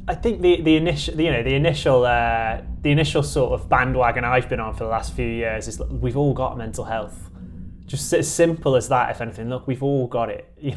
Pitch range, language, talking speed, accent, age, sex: 110-130 Hz, English, 235 wpm, British, 20-39, male